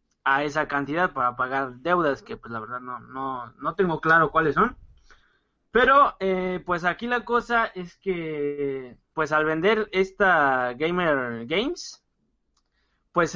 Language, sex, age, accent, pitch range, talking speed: Spanish, male, 20-39, Mexican, 140-180 Hz, 145 wpm